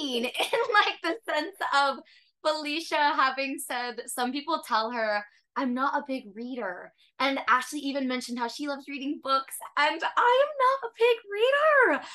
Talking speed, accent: 165 wpm, American